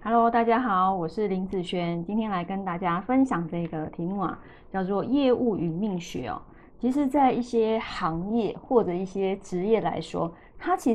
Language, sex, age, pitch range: Chinese, female, 20-39, 190-255 Hz